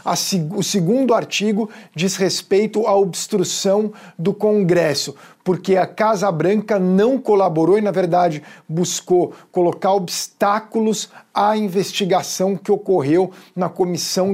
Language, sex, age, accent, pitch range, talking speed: Portuguese, male, 50-69, Brazilian, 180-205 Hz, 115 wpm